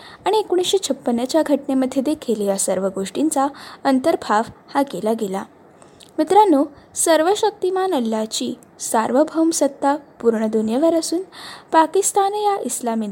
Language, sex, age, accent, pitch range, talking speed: Marathi, female, 10-29, native, 230-320 Hz, 115 wpm